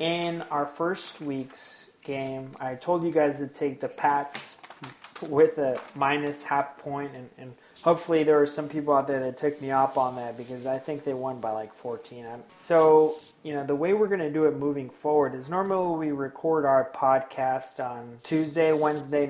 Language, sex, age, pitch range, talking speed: English, male, 20-39, 135-155 Hz, 195 wpm